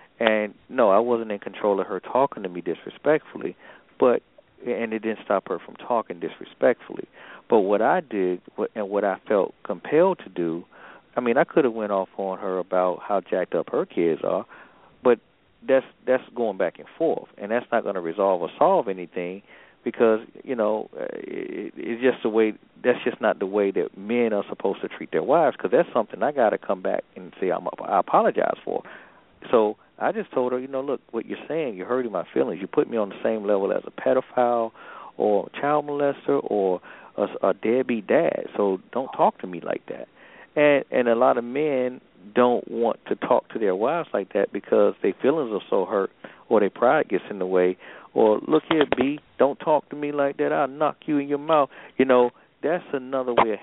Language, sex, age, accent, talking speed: English, male, 40-59, American, 215 wpm